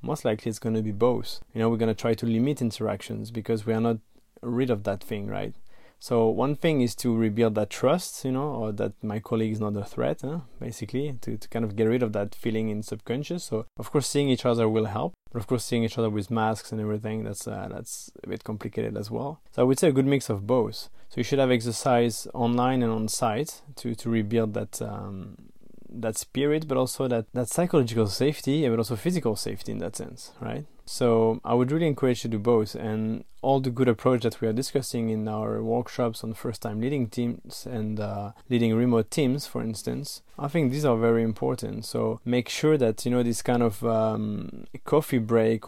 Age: 20-39